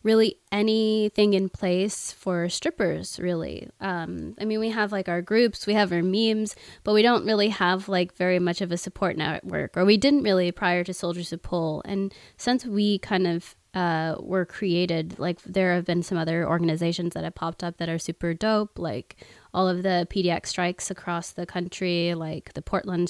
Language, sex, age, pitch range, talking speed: English, female, 20-39, 170-200 Hz, 195 wpm